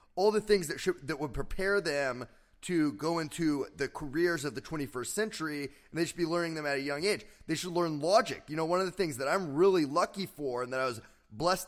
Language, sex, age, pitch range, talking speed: English, male, 30-49, 145-195 Hz, 245 wpm